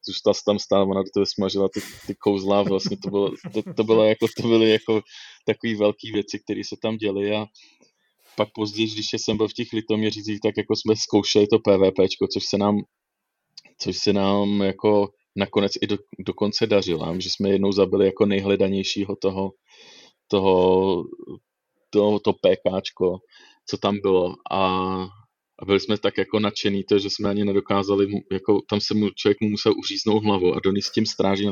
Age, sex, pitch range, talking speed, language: 20-39, male, 100-110 Hz, 185 wpm, Czech